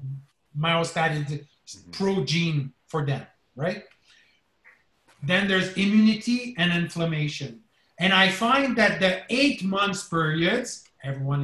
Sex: male